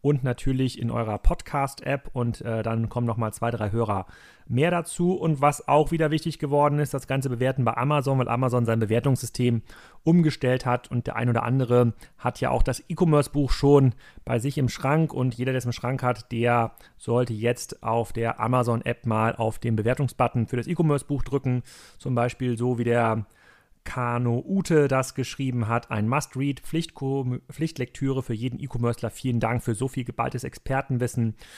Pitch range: 115-140 Hz